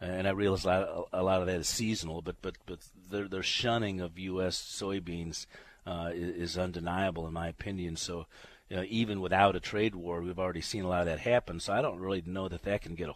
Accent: American